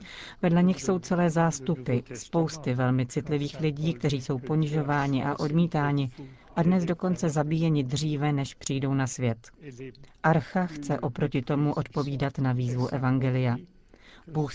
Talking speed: 130 wpm